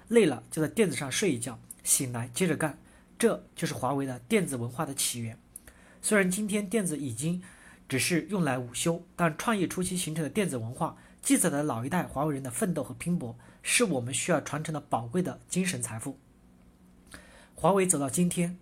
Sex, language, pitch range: male, Chinese, 130-180 Hz